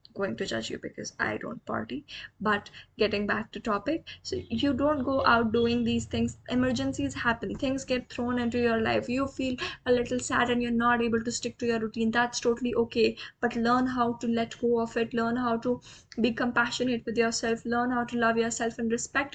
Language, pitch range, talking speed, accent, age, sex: English, 220-245 Hz, 210 wpm, Indian, 10-29, female